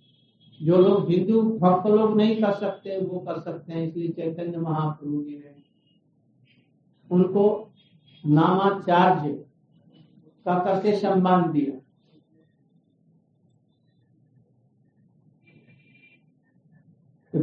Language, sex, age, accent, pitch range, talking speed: English, male, 60-79, Indian, 160-195 Hz, 70 wpm